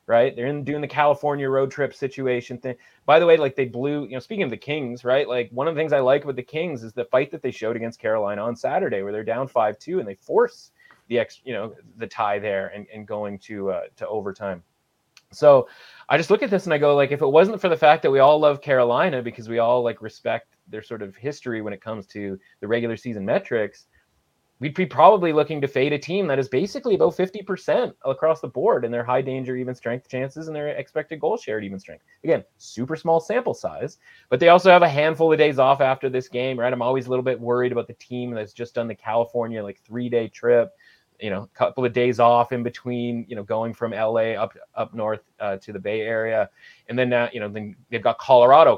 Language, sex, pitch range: English, male, 115-145 Hz